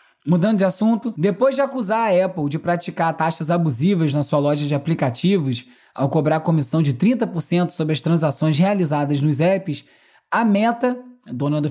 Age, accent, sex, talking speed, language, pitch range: 20-39, Brazilian, male, 165 wpm, Portuguese, 165-230 Hz